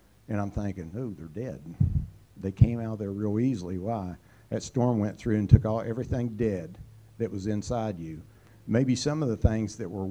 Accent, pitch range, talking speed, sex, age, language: American, 100-125 Hz, 200 wpm, male, 60-79, English